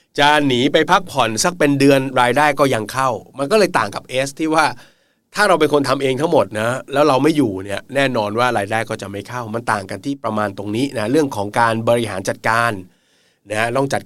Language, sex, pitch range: Thai, male, 110-140 Hz